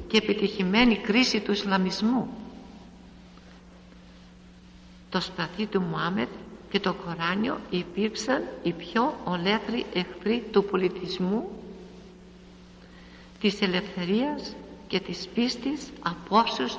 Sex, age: female, 60-79